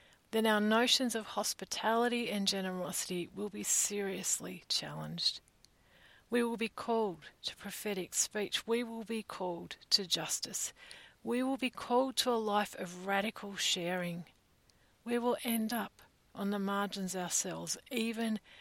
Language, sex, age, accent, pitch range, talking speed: English, female, 40-59, Australian, 195-240 Hz, 140 wpm